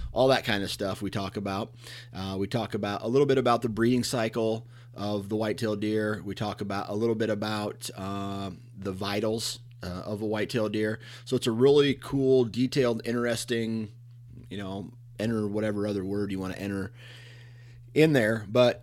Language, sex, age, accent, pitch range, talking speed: English, male, 30-49, American, 95-120 Hz, 190 wpm